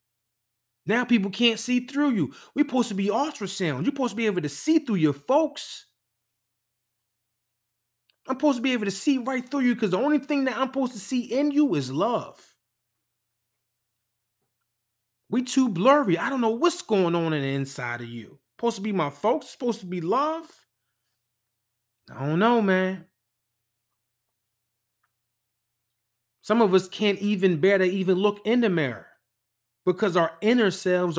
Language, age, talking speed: English, 30-49, 165 wpm